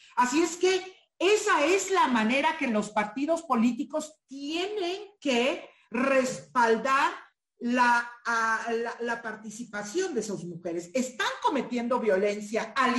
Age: 50-69